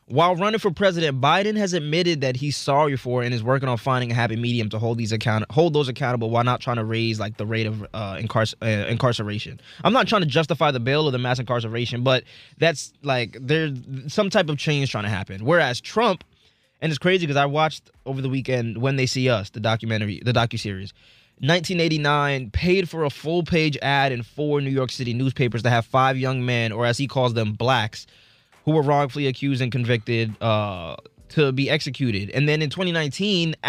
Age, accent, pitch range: 20-39, American, 115-150 Hz